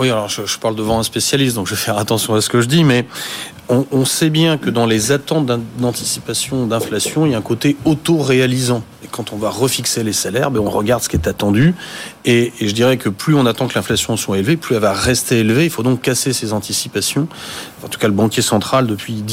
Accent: French